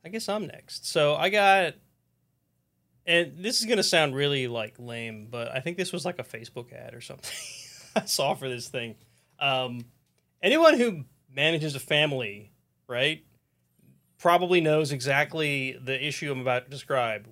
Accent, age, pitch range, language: American, 30-49, 130-180 Hz, English